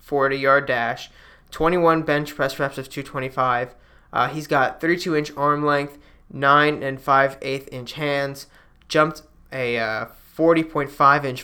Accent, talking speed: American, 115 wpm